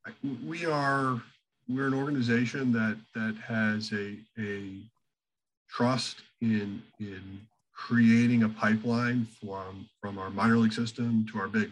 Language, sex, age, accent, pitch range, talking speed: English, male, 40-59, American, 105-120 Hz, 130 wpm